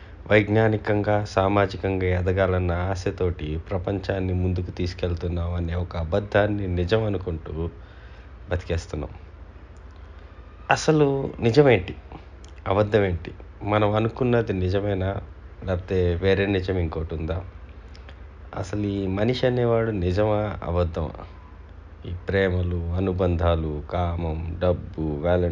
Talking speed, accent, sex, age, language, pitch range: 60 wpm, Indian, male, 30-49, English, 85-105 Hz